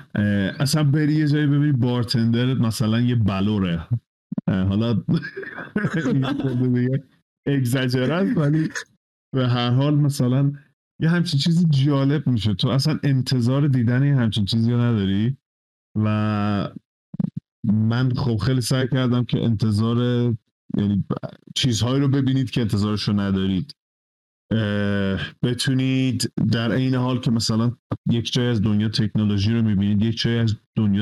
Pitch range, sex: 105-135 Hz, male